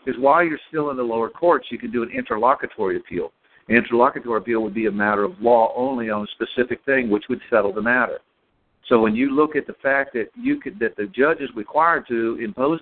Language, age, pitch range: English, 50-69, 115-145 Hz